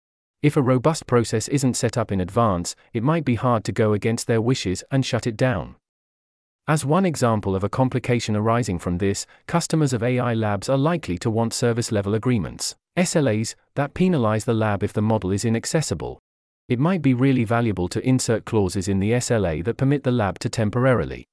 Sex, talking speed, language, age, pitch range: male, 195 wpm, English, 40-59, 110-140 Hz